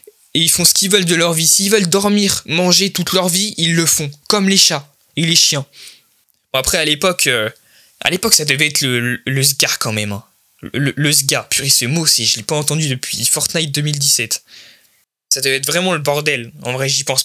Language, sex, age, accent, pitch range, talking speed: French, male, 20-39, French, 140-180 Hz, 235 wpm